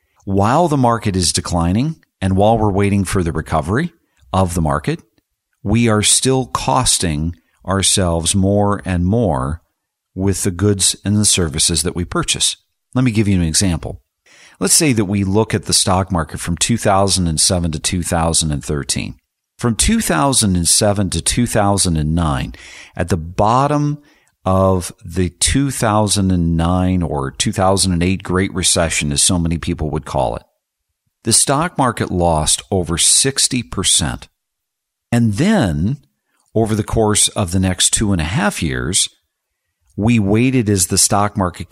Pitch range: 85-115 Hz